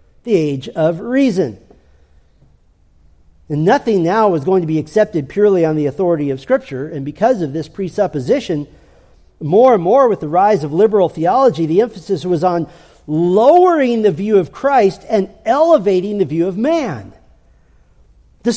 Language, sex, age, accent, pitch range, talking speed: English, male, 40-59, American, 145-205 Hz, 155 wpm